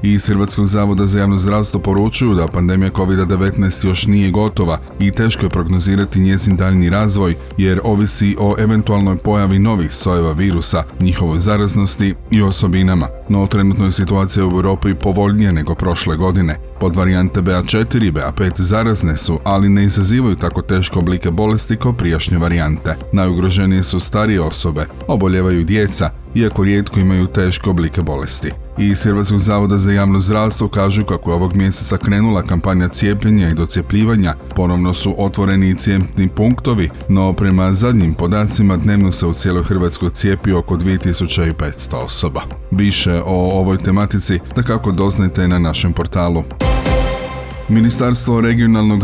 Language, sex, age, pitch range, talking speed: Croatian, male, 30-49, 90-105 Hz, 145 wpm